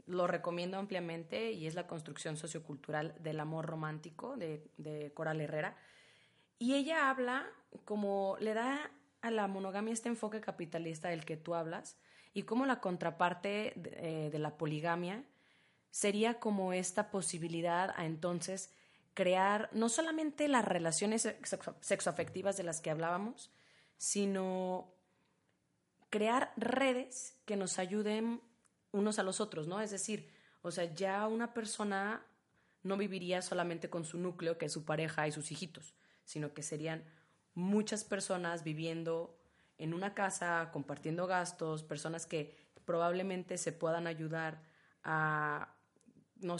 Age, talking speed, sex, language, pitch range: 30-49, 135 wpm, female, Spanish, 165-210 Hz